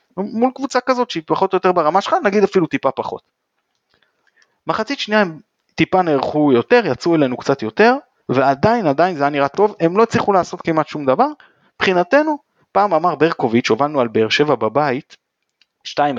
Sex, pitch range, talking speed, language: male, 140-215 Hz, 165 wpm, Hebrew